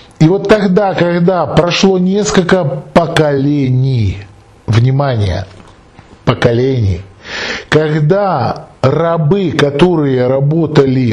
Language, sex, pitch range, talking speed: Russian, male, 120-165 Hz, 70 wpm